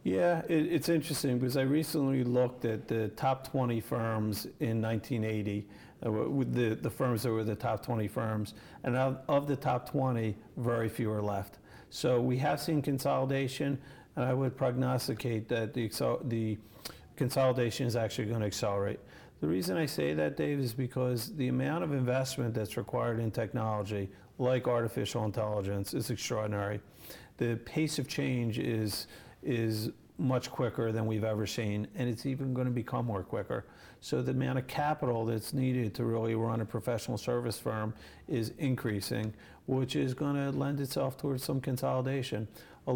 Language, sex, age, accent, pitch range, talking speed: English, male, 50-69, American, 110-130 Hz, 165 wpm